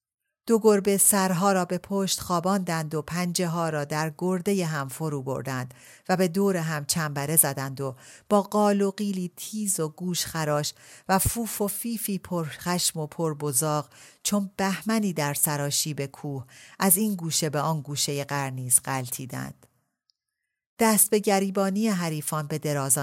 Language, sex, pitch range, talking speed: Persian, female, 140-190 Hz, 150 wpm